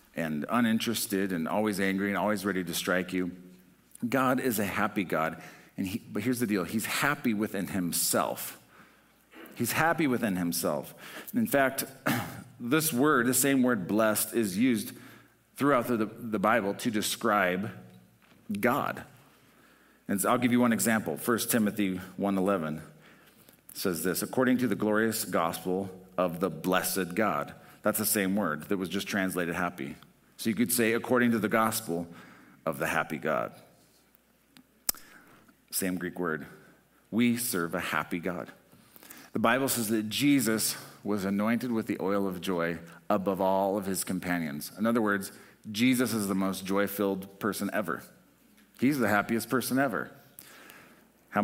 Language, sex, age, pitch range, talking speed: English, male, 40-59, 90-115 Hz, 155 wpm